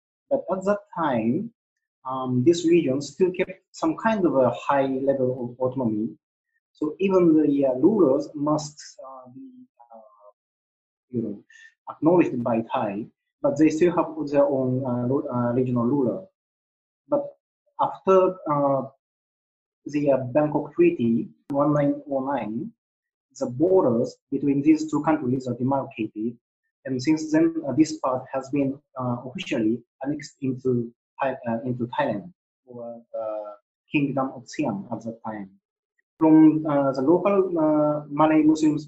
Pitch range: 125-180 Hz